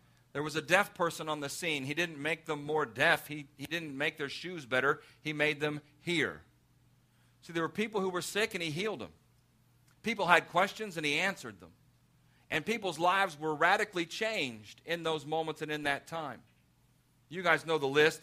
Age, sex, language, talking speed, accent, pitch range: 50-69, male, English, 200 wpm, American, 130-165 Hz